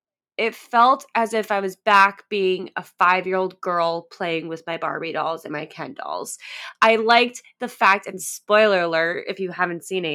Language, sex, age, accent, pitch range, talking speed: English, female, 20-39, American, 185-235 Hz, 190 wpm